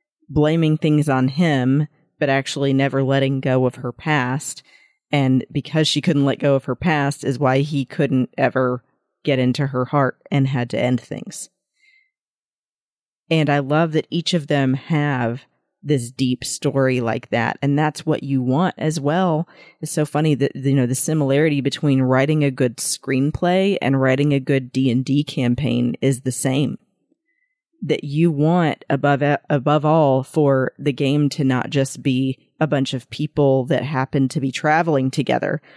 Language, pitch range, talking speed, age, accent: English, 130-155 Hz, 170 wpm, 40-59, American